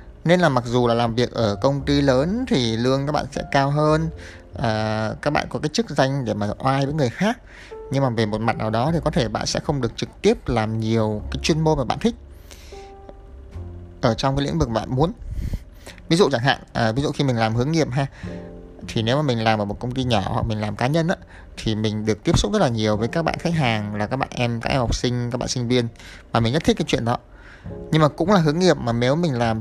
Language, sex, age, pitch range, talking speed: Vietnamese, male, 20-39, 105-135 Hz, 270 wpm